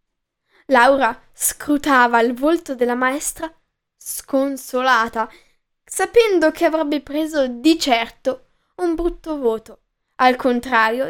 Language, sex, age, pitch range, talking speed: Italian, female, 10-29, 245-315 Hz, 95 wpm